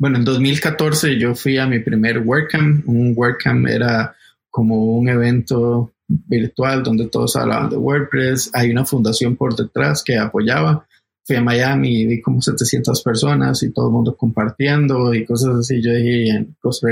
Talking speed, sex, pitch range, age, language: 165 wpm, male, 115-135 Hz, 20-39, Spanish